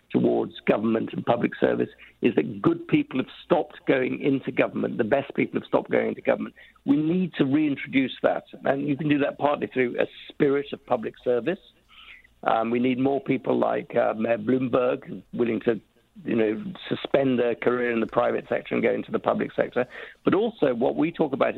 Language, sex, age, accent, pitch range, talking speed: English, male, 50-69, British, 115-145 Hz, 195 wpm